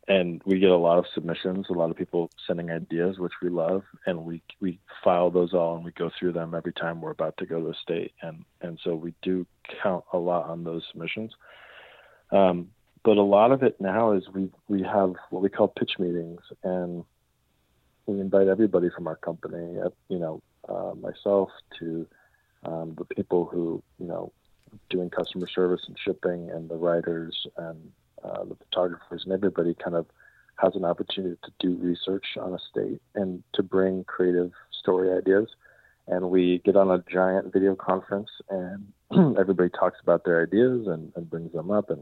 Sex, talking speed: male, 190 wpm